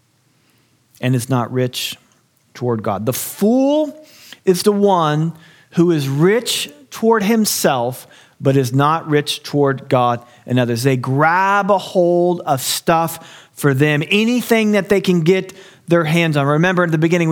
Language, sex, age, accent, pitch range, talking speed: English, male, 40-59, American, 125-175 Hz, 155 wpm